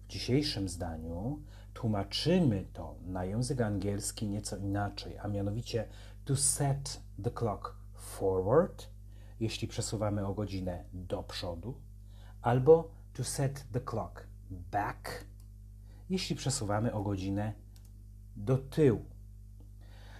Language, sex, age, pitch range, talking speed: Polish, male, 40-59, 100-115 Hz, 105 wpm